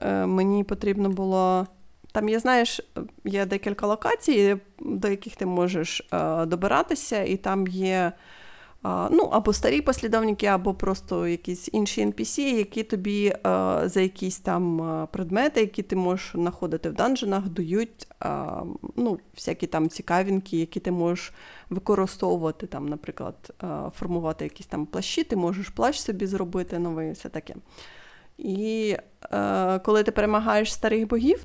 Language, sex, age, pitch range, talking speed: Ukrainian, female, 30-49, 180-220 Hz, 130 wpm